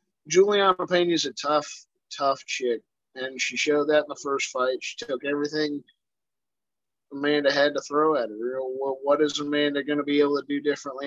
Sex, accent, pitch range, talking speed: male, American, 140-155 Hz, 195 wpm